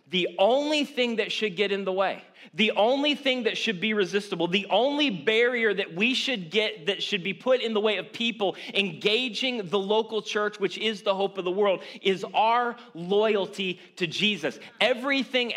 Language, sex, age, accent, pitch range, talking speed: English, male, 30-49, American, 145-200 Hz, 190 wpm